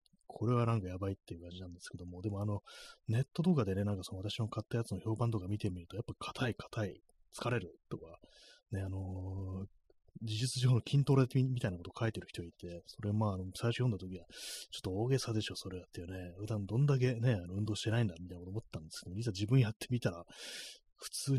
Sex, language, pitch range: male, Japanese, 95-120 Hz